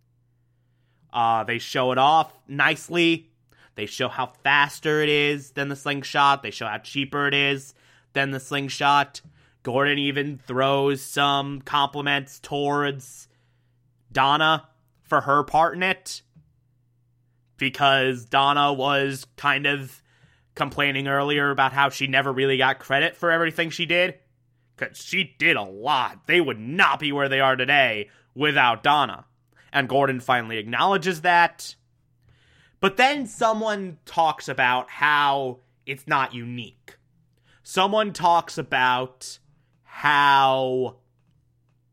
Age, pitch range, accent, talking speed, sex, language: 20-39, 125-150 Hz, American, 125 wpm, male, English